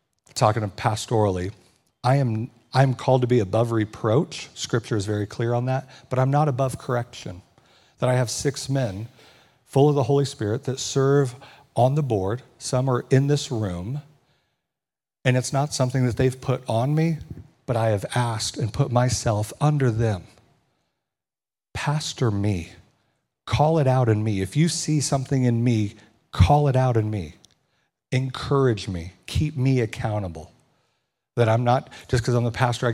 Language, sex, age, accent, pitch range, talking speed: English, male, 40-59, American, 105-130 Hz, 165 wpm